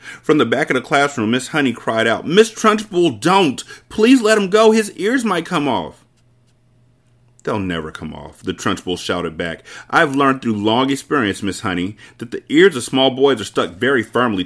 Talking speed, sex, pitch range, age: 195 wpm, male, 110-150 Hz, 40-59